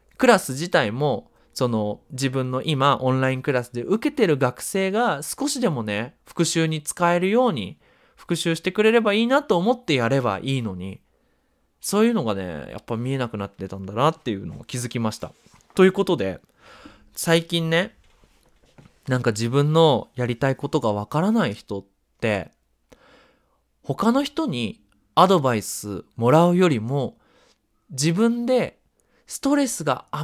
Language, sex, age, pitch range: Japanese, male, 20-39, 120-200 Hz